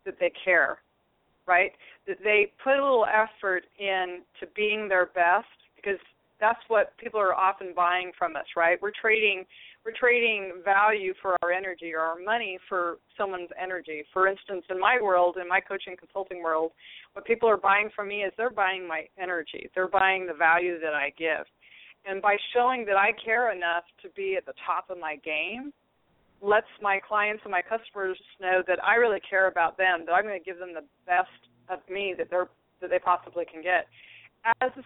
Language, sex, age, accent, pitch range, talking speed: English, female, 40-59, American, 180-220 Hz, 195 wpm